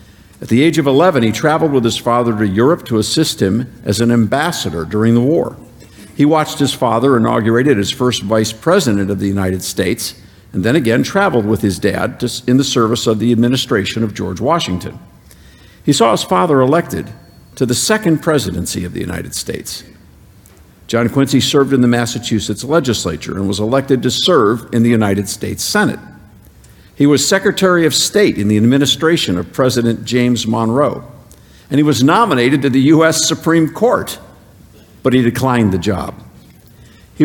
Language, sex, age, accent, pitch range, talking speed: English, male, 50-69, American, 105-145 Hz, 175 wpm